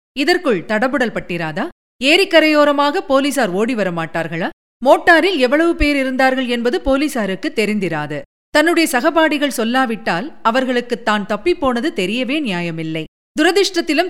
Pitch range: 200-295 Hz